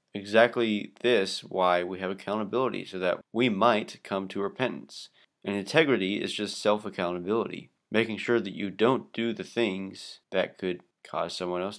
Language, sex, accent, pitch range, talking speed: English, male, American, 95-120 Hz, 160 wpm